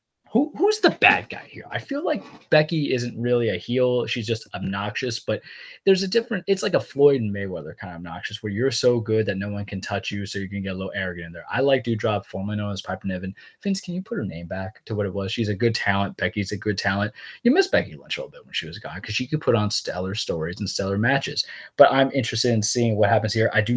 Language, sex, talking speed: English, male, 275 wpm